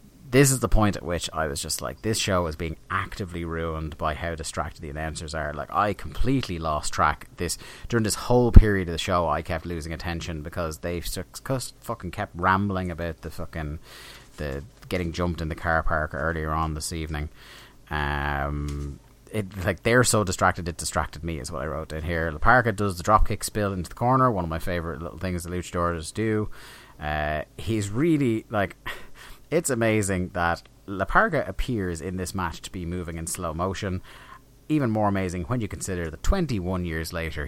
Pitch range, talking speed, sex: 80-105 Hz, 190 wpm, male